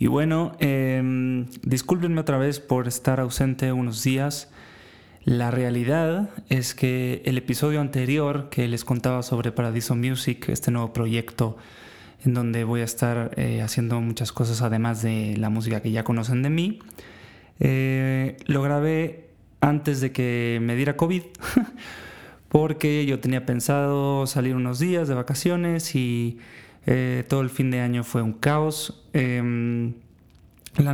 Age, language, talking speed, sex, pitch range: 20-39, Spanish, 145 wpm, male, 120-140 Hz